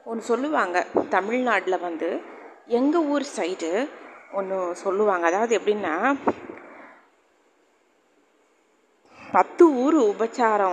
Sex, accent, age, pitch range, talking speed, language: female, native, 30-49, 190-265 Hz, 80 wpm, Tamil